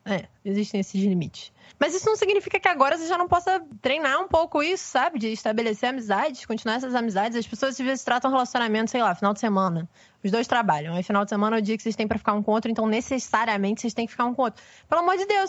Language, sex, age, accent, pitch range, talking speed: Portuguese, female, 20-39, Brazilian, 210-285 Hz, 260 wpm